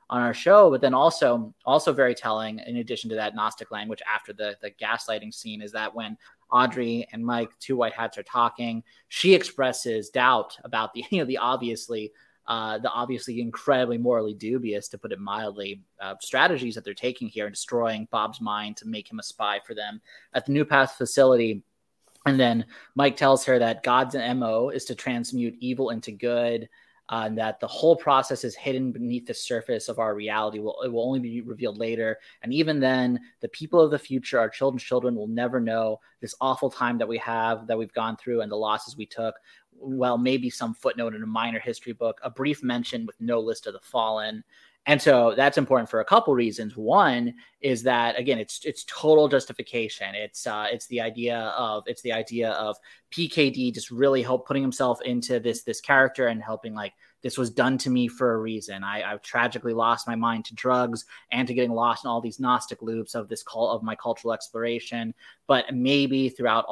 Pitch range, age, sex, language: 110-130 Hz, 20-39, male, English